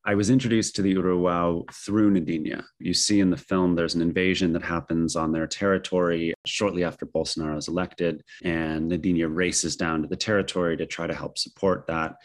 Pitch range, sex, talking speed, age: 80-95 Hz, male, 190 wpm, 30-49